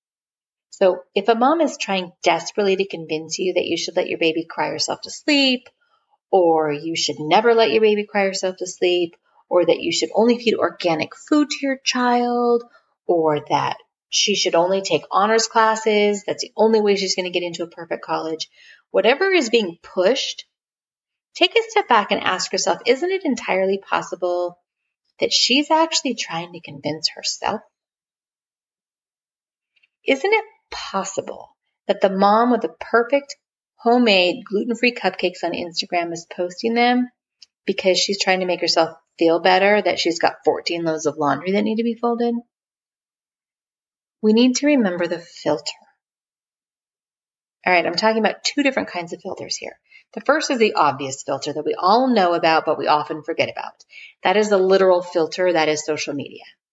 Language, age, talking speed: English, 30-49, 170 wpm